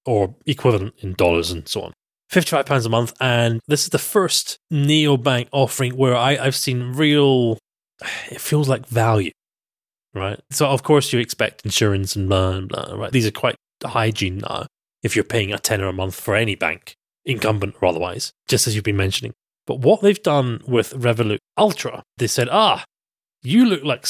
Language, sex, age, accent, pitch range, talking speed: English, male, 30-49, British, 110-140 Hz, 190 wpm